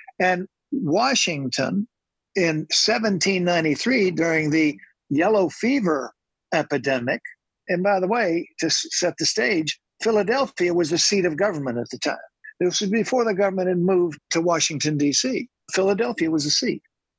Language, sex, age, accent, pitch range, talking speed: English, male, 60-79, American, 165-220 Hz, 140 wpm